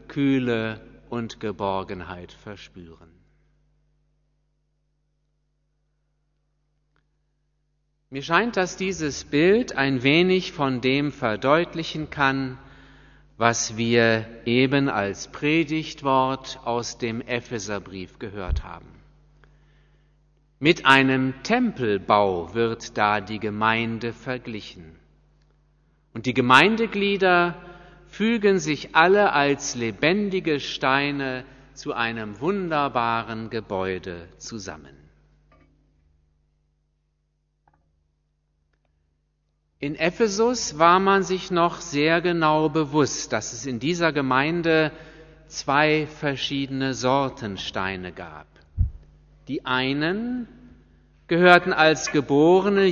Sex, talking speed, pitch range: male, 80 wpm, 110-155 Hz